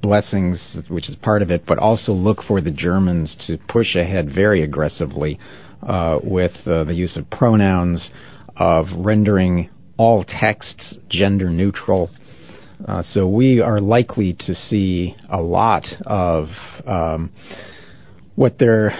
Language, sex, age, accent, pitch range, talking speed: English, male, 40-59, American, 85-105 Hz, 135 wpm